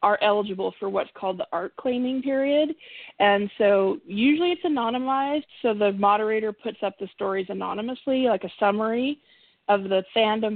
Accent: American